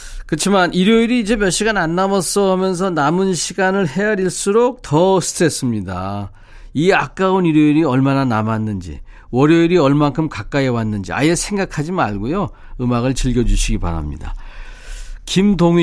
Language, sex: Korean, male